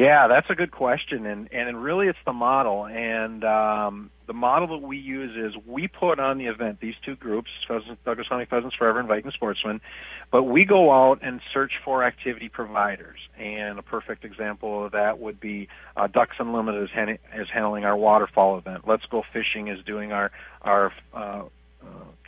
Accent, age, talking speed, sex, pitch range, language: American, 50-69, 190 wpm, male, 105-130 Hz, English